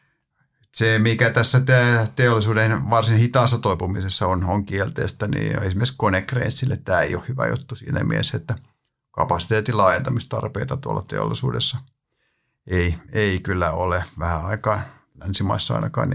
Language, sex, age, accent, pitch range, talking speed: Finnish, male, 50-69, native, 95-125 Hz, 125 wpm